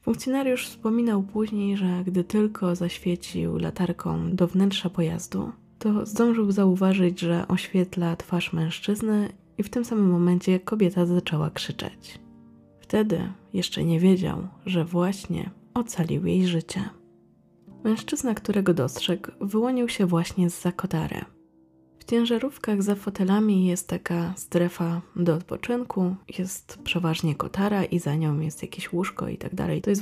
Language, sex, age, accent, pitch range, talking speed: Polish, female, 20-39, native, 165-200 Hz, 130 wpm